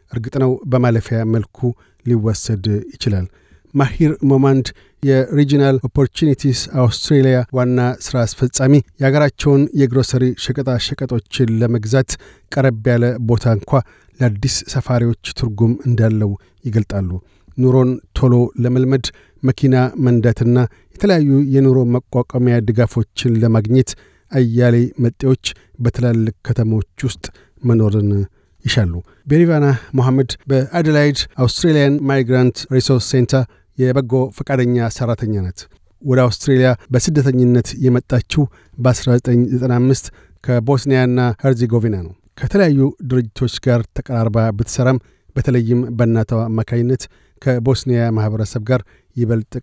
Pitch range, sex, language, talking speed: 115-135 Hz, male, Amharic, 85 wpm